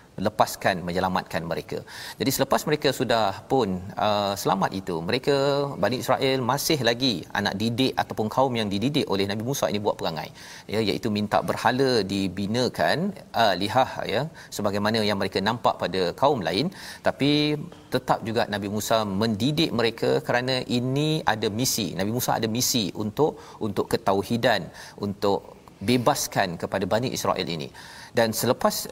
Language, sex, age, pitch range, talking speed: Malayalam, male, 40-59, 100-130 Hz, 145 wpm